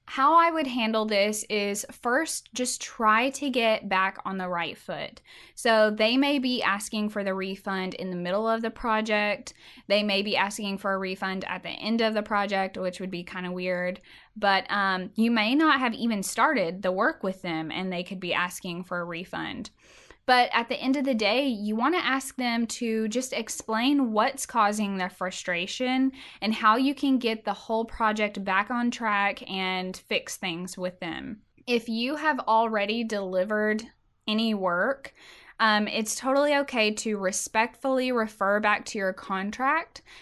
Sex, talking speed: female, 180 wpm